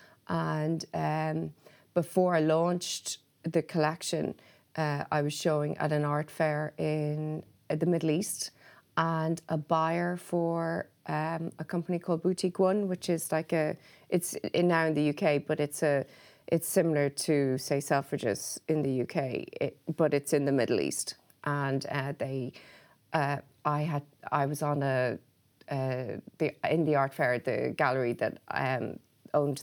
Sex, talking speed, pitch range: female, 160 wpm, 140-160 Hz